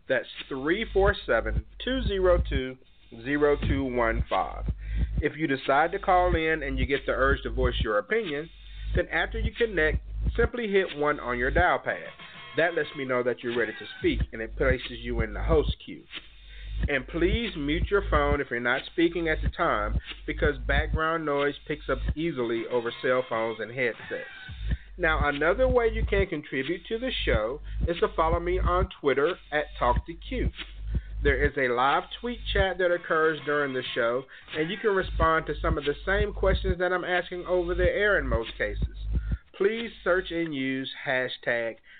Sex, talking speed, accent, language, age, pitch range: male, 170 wpm, American, English, 40-59, 130-180 Hz